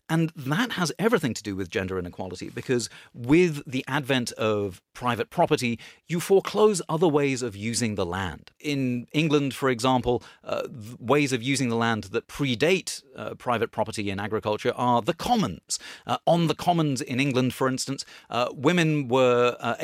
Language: English